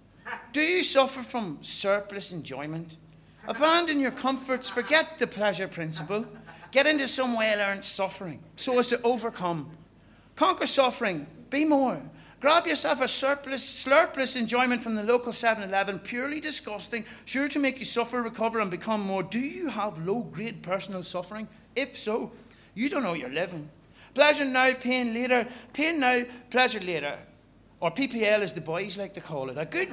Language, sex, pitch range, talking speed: English, male, 190-255 Hz, 160 wpm